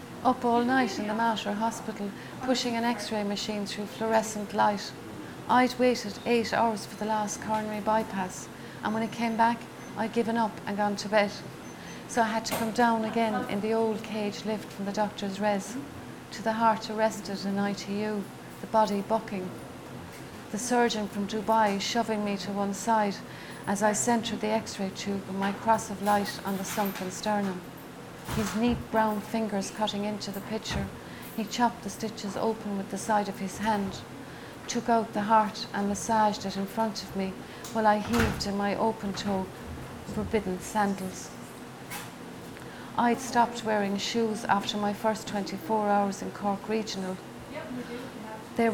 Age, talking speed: 40-59, 165 wpm